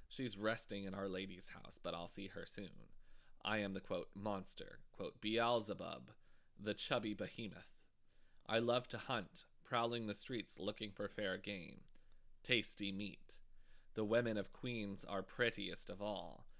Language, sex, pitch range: English, male, 100-115 Hz